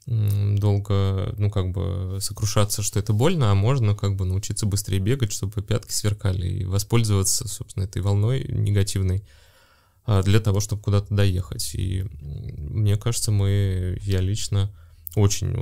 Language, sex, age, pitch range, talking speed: Russian, male, 20-39, 95-110 Hz, 140 wpm